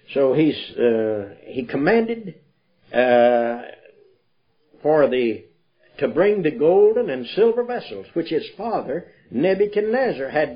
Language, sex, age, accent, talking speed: English, male, 60-79, American, 115 wpm